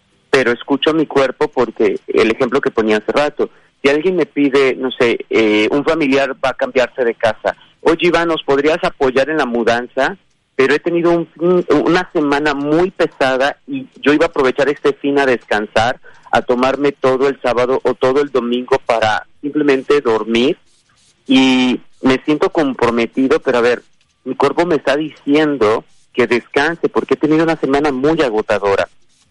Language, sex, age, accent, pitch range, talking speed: Spanish, male, 40-59, Mexican, 125-150 Hz, 170 wpm